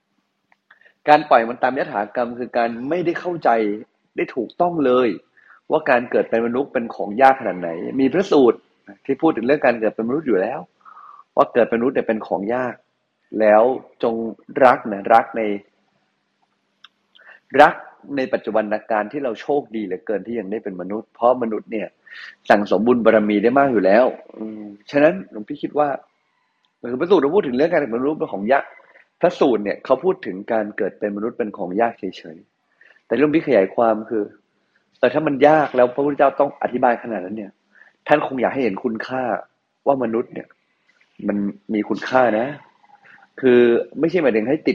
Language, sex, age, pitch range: Thai, male, 30-49, 105-140 Hz